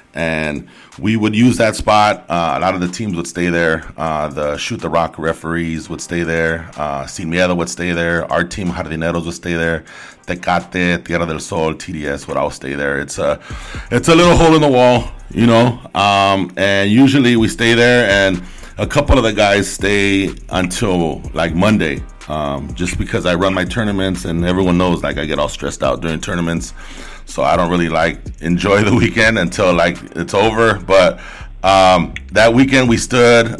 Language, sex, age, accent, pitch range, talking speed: English, male, 30-49, American, 85-110 Hz, 190 wpm